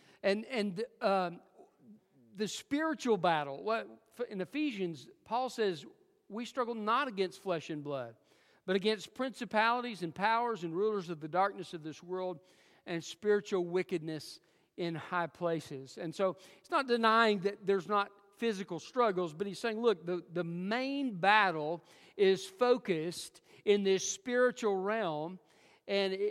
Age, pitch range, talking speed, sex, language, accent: 50-69, 165-220 Hz, 140 wpm, male, English, American